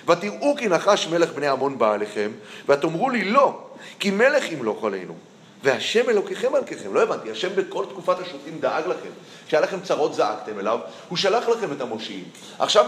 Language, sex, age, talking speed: Hebrew, male, 30-49, 175 wpm